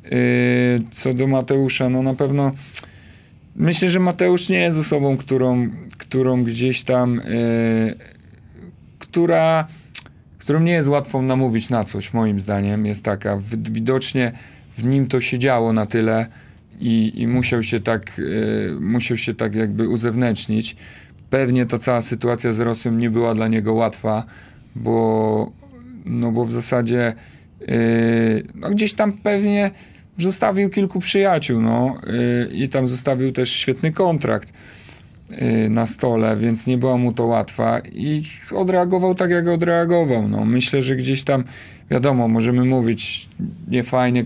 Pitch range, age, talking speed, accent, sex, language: 115-135 Hz, 30-49, 130 wpm, native, male, Polish